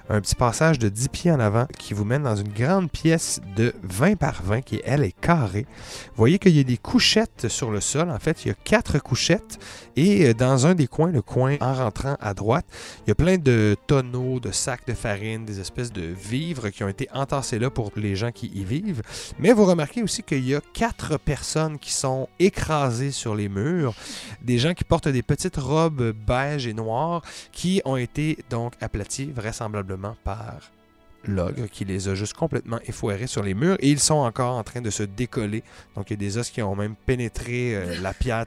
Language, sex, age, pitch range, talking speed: French, male, 30-49, 105-150 Hz, 215 wpm